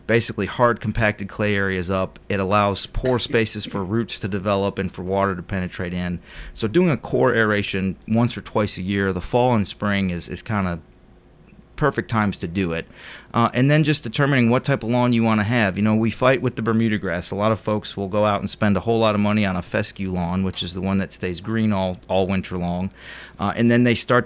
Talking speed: 240 wpm